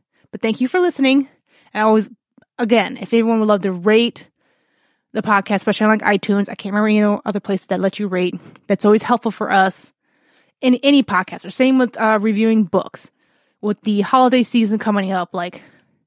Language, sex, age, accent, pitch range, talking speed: English, female, 20-39, American, 205-255 Hz, 195 wpm